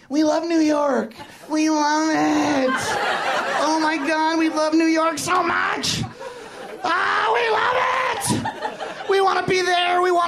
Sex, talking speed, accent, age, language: male, 160 wpm, American, 30-49, English